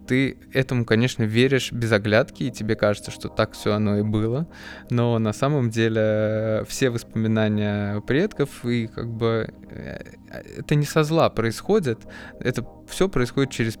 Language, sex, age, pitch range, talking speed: Russian, male, 20-39, 105-125 Hz, 150 wpm